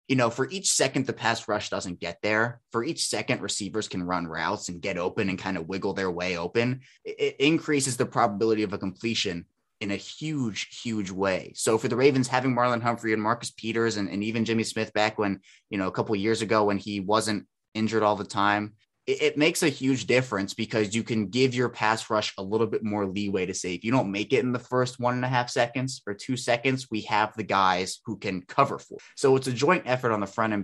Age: 20-39